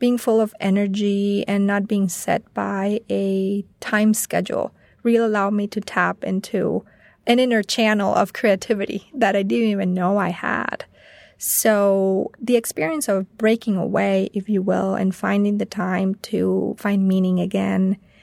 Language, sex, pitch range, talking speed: English, female, 195-215 Hz, 155 wpm